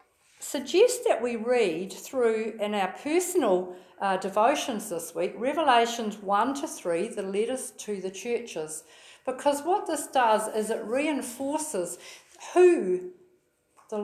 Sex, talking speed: female, 130 wpm